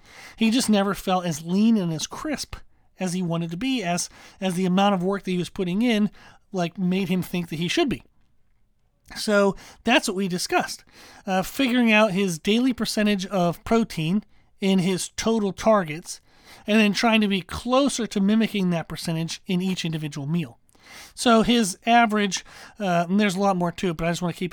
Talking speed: 200 wpm